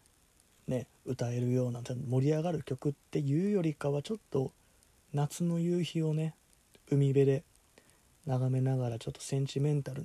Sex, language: male, Japanese